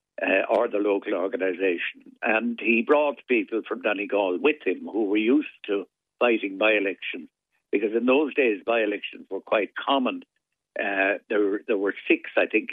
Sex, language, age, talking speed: male, English, 60-79, 155 wpm